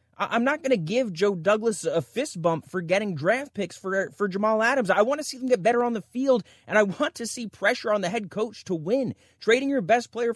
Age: 30-49